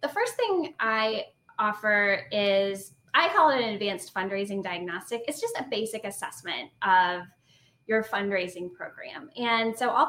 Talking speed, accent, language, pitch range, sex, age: 150 wpm, American, English, 190-250 Hz, female, 10-29